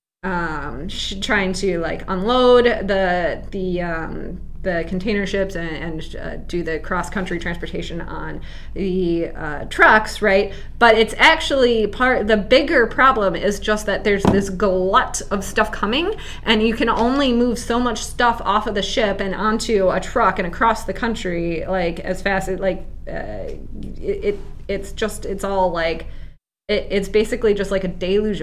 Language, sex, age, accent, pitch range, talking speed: English, female, 20-39, American, 190-230 Hz, 165 wpm